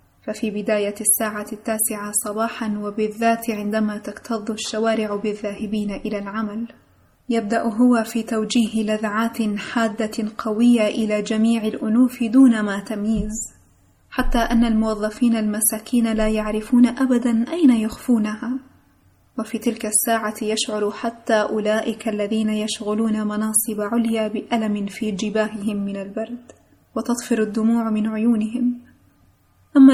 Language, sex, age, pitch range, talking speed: Arabic, female, 20-39, 215-235 Hz, 110 wpm